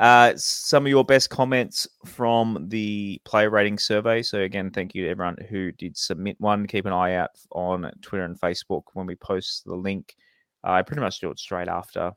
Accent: Australian